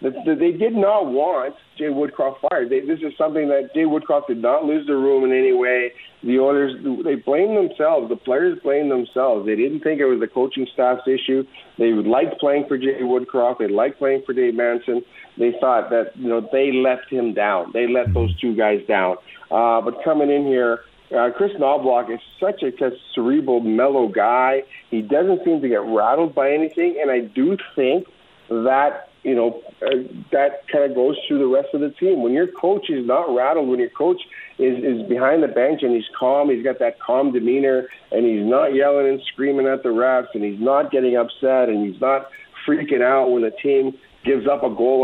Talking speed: 210 wpm